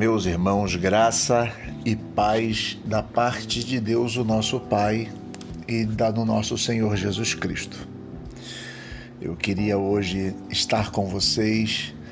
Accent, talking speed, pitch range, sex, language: Brazilian, 125 wpm, 105-120 Hz, male, Portuguese